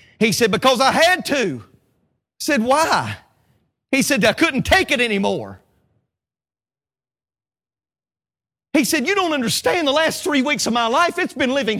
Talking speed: 160 wpm